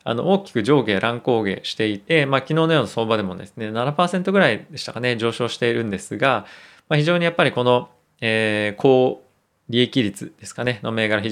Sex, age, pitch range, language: male, 20-39, 110-150 Hz, Japanese